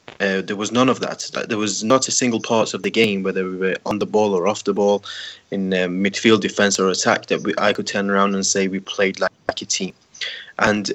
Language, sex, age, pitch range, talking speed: English, male, 20-39, 100-110 Hz, 245 wpm